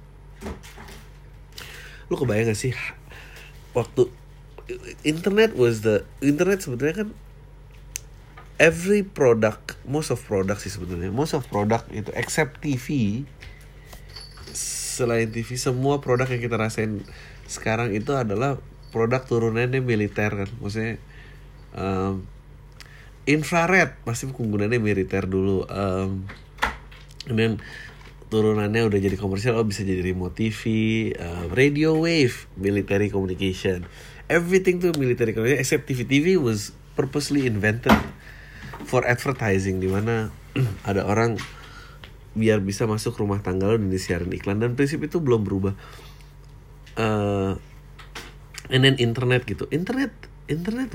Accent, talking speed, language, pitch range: native, 115 wpm, Indonesian, 105-140 Hz